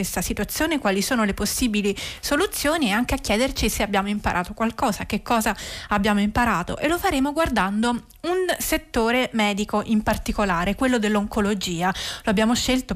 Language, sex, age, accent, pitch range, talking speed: Italian, female, 30-49, native, 205-260 Hz, 155 wpm